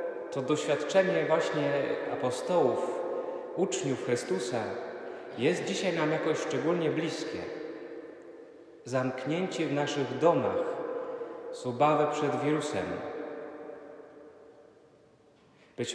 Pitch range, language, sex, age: 140-170 Hz, Polish, male, 30-49